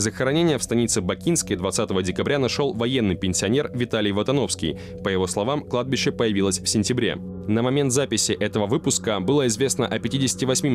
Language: Russian